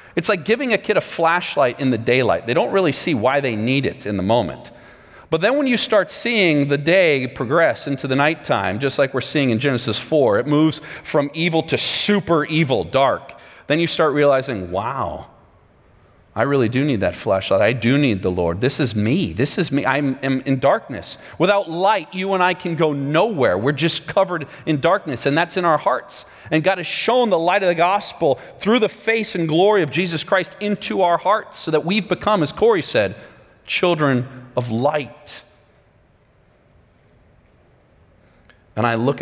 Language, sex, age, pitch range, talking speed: English, male, 40-59, 125-170 Hz, 190 wpm